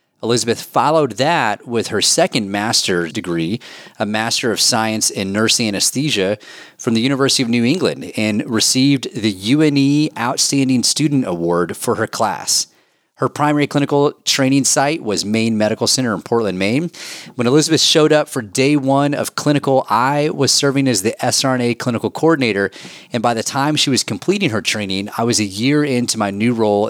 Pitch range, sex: 110-140 Hz, male